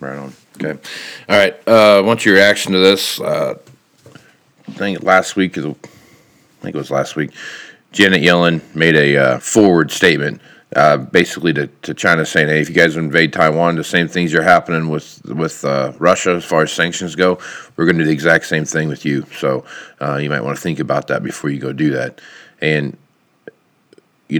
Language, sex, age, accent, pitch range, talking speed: English, male, 40-59, American, 75-90 Hz, 200 wpm